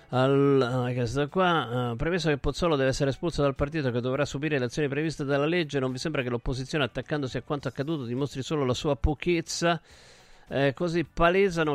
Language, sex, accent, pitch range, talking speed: Italian, male, native, 100-145 Hz, 185 wpm